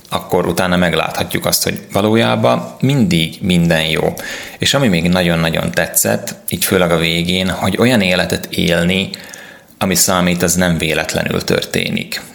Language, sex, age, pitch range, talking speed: Hungarian, male, 20-39, 85-90 Hz, 135 wpm